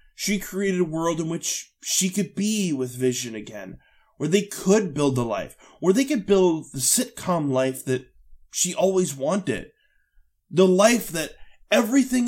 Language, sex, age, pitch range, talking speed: English, male, 20-39, 130-185 Hz, 160 wpm